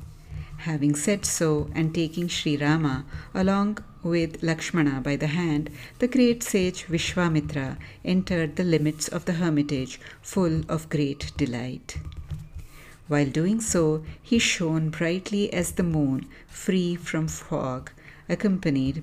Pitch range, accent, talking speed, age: 145-175 Hz, Indian, 125 wpm, 60-79